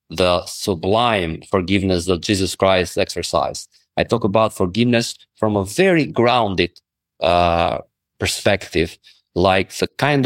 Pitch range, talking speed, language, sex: 95-120 Hz, 115 wpm, English, male